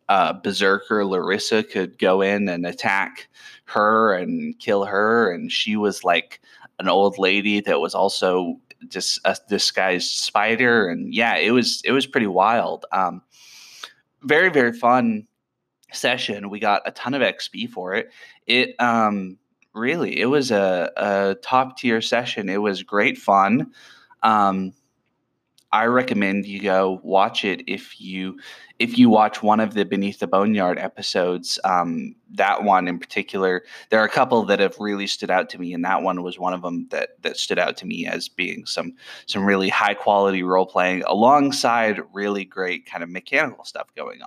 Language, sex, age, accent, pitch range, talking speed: English, male, 20-39, American, 95-115 Hz, 170 wpm